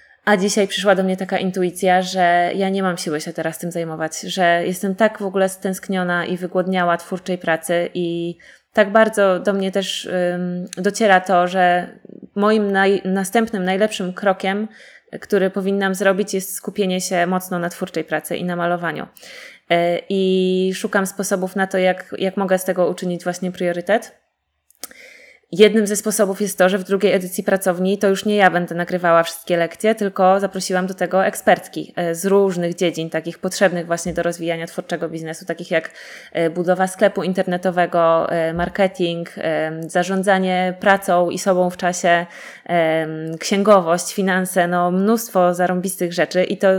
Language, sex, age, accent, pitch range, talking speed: Polish, female, 20-39, native, 175-195 Hz, 150 wpm